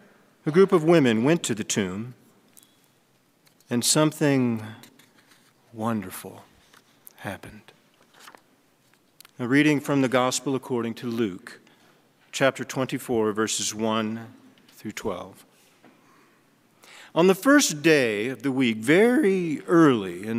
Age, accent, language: 40-59, American, English